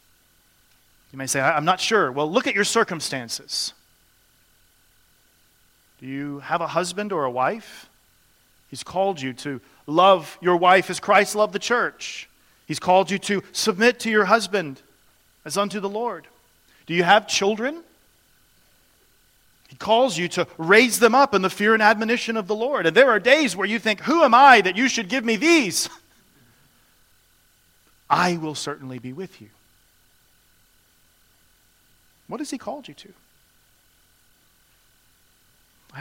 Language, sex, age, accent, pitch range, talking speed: English, male, 40-59, American, 150-230 Hz, 150 wpm